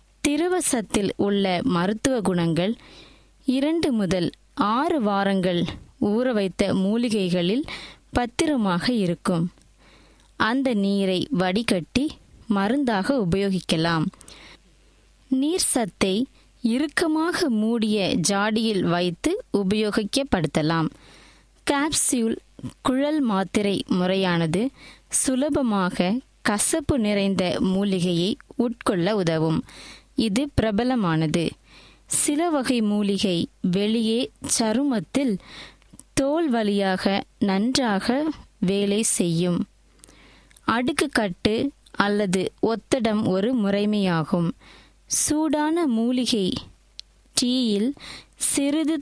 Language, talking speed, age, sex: Tamil, 65 wpm, 20-39, female